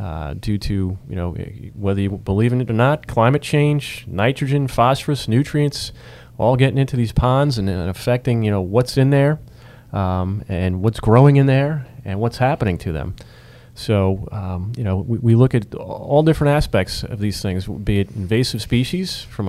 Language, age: English, 40-59